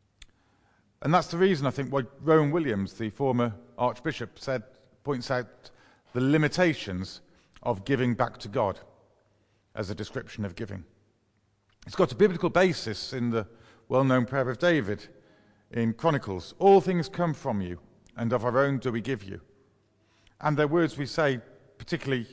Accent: British